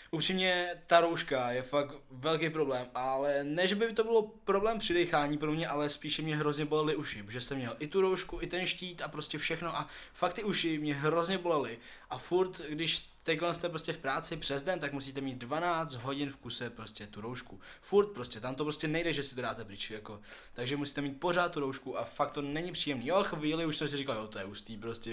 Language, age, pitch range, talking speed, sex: Czech, 20-39, 130-170 Hz, 230 wpm, male